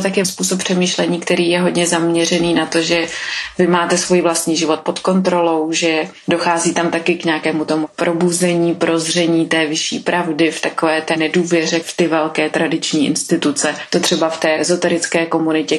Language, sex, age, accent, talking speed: Czech, female, 30-49, native, 170 wpm